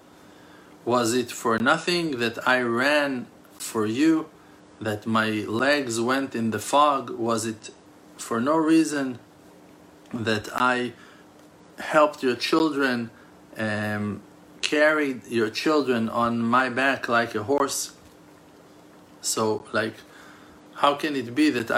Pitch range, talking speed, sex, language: 105-140 Hz, 120 wpm, male, English